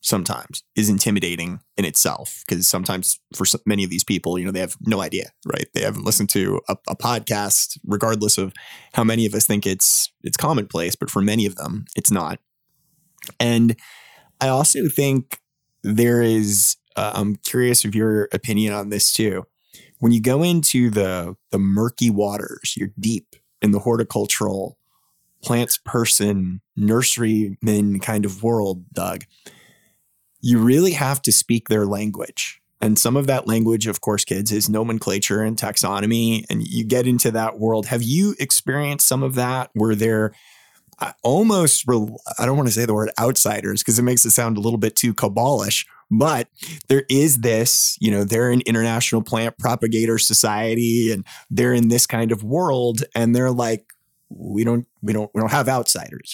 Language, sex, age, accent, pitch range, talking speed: English, male, 20-39, American, 105-125 Hz, 170 wpm